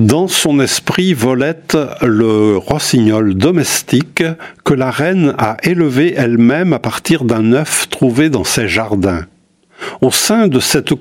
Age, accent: 60-79, French